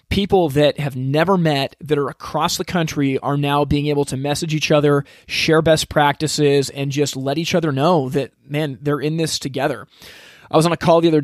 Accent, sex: American, male